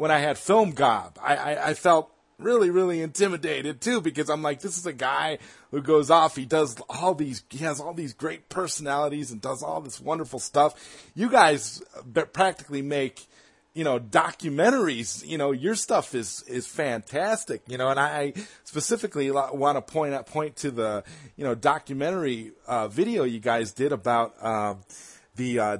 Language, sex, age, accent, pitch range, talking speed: English, male, 30-49, American, 120-160 Hz, 175 wpm